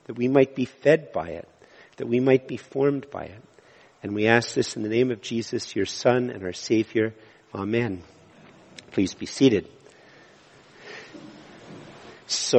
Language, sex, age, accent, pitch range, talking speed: English, male, 50-69, American, 110-130 Hz, 155 wpm